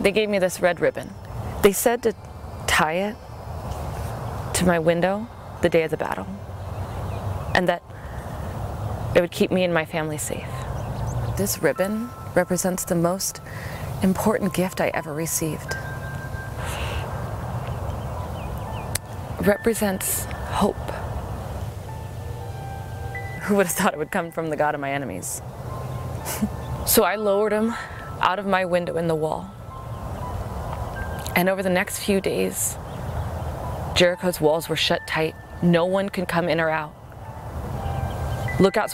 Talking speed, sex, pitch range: 130 wpm, female, 110-185 Hz